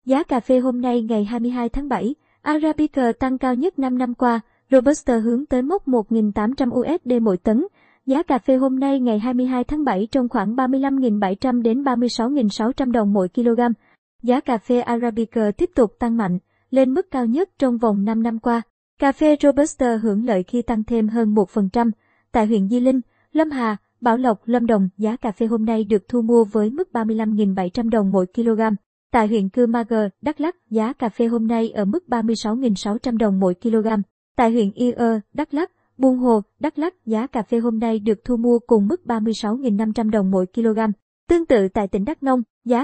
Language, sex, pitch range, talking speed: Vietnamese, male, 220-255 Hz, 195 wpm